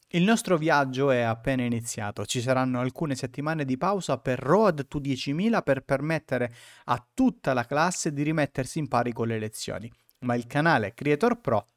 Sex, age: male, 30-49